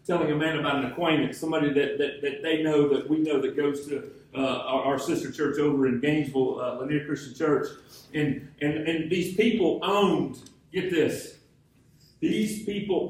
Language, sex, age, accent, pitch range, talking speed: English, male, 40-59, American, 150-205 Hz, 185 wpm